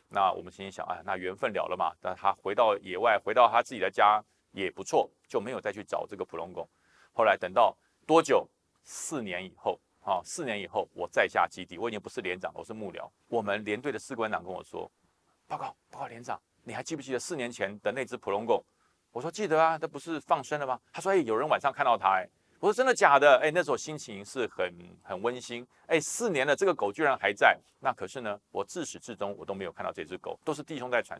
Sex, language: male, Chinese